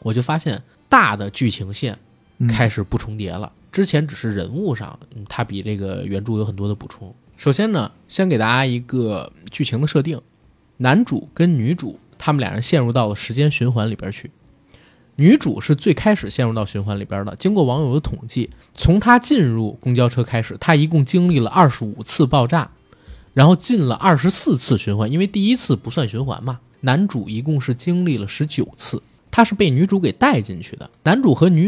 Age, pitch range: 20-39, 110-160 Hz